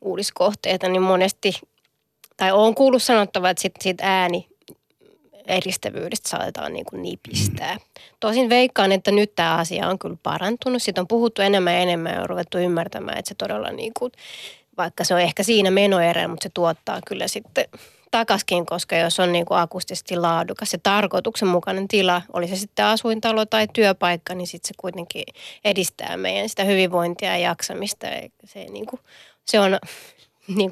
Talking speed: 150 wpm